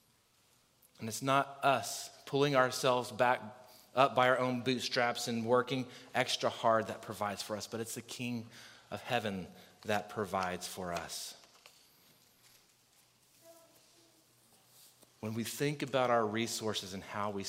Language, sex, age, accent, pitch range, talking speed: English, male, 30-49, American, 110-135 Hz, 130 wpm